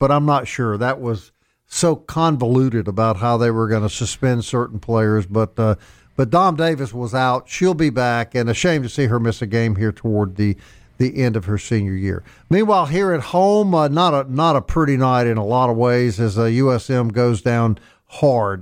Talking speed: 215 wpm